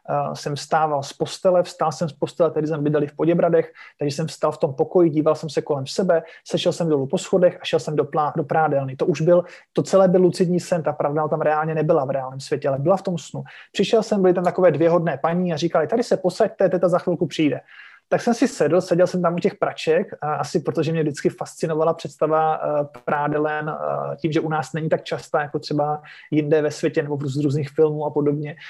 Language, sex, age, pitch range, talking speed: Slovak, male, 20-39, 150-185 Hz, 235 wpm